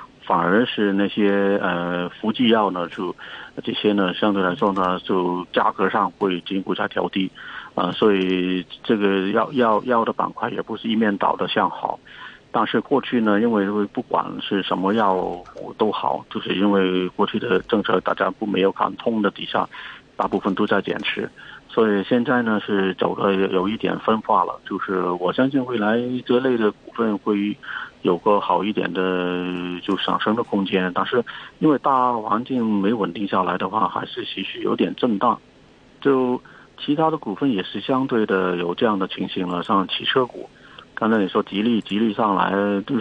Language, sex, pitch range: Chinese, male, 95-120 Hz